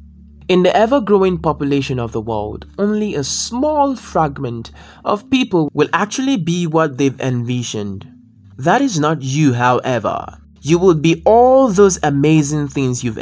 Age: 20-39